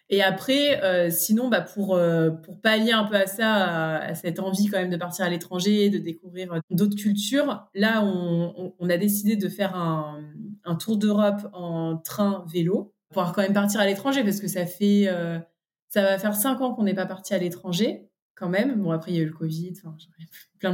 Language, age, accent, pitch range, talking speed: French, 20-39, French, 170-205 Hz, 225 wpm